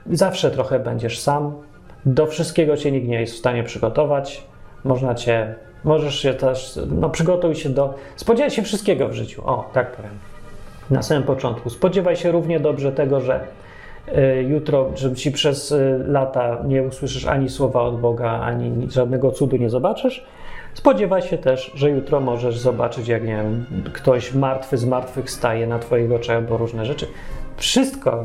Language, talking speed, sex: Polish, 165 wpm, male